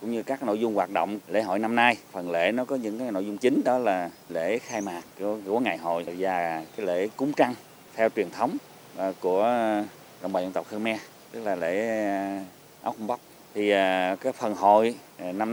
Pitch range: 100-120 Hz